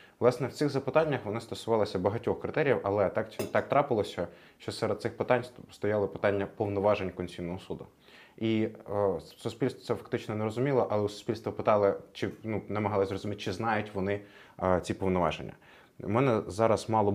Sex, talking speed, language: male, 150 wpm, Ukrainian